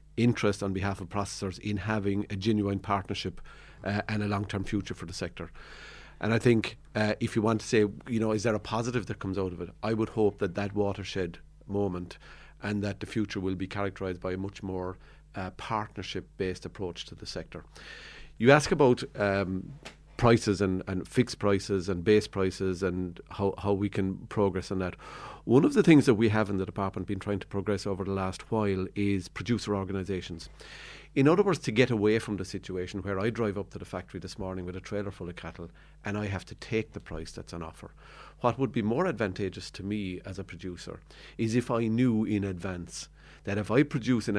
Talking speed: 215 wpm